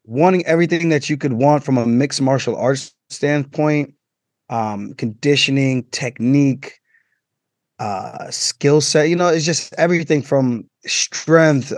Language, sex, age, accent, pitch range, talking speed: English, male, 20-39, American, 120-145 Hz, 125 wpm